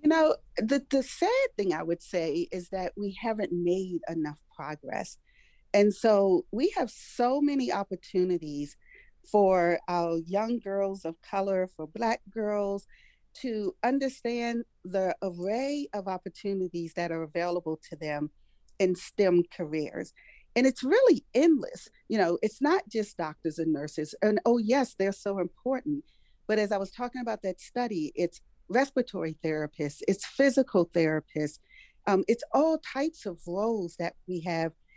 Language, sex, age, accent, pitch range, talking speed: English, female, 40-59, American, 175-235 Hz, 150 wpm